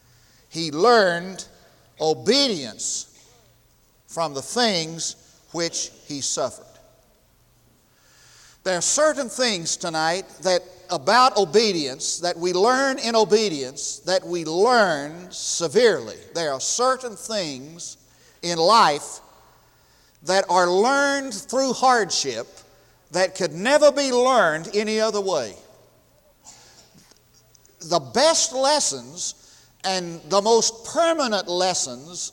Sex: male